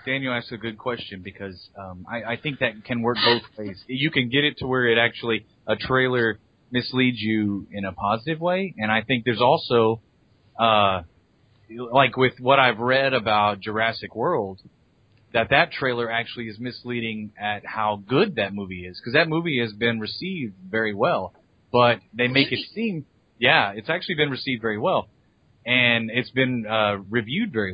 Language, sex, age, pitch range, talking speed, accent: English, male, 30-49, 105-130 Hz, 175 wpm, American